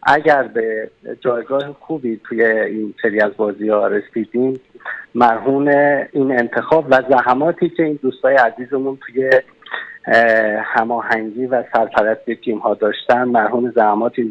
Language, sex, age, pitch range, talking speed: Persian, male, 50-69, 125-155 Hz, 115 wpm